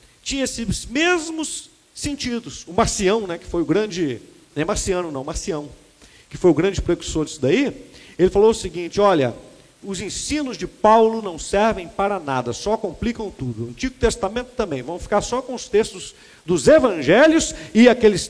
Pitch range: 165-250 Hz